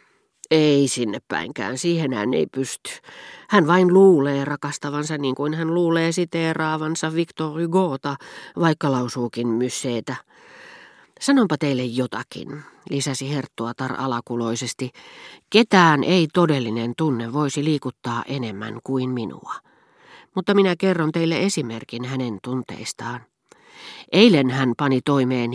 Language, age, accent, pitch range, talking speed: Finnish, 40-59, native, 125-160 Hz, 110 wpm